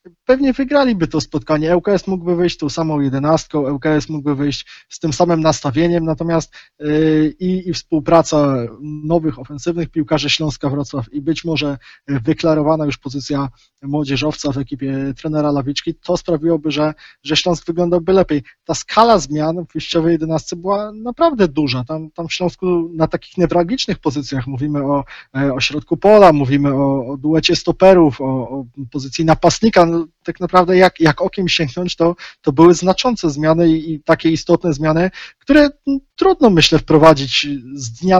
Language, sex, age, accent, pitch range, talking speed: Polish, male, 20-39, native, 145-170 Hz, 150 wpm